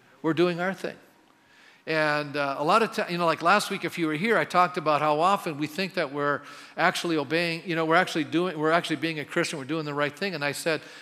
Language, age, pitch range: English, 50-69, 140-175 Hz